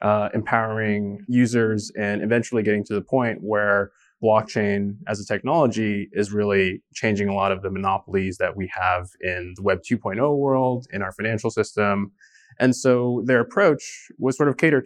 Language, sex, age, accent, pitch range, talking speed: English, male, 20-39, American, 105-120 Hz, 170 wpm